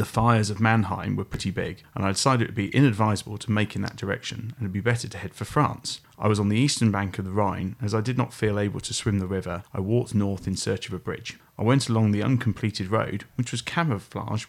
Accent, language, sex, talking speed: British, English, male, 270 wpm